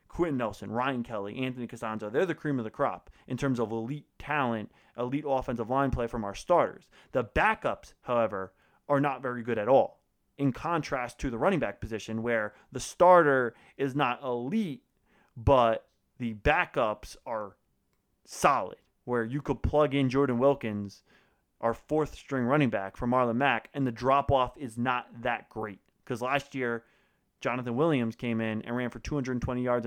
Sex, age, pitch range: male, 30-49, 115-140 Hz